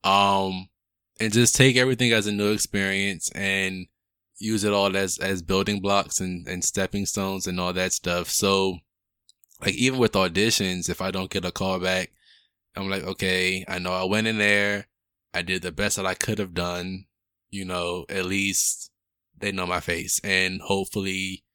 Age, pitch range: 20-39, 90-105 Hz